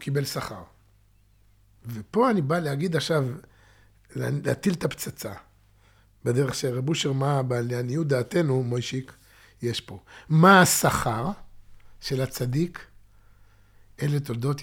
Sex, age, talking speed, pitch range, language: male, 60-79, 105 wpm, 110-160 Hz, Hebrew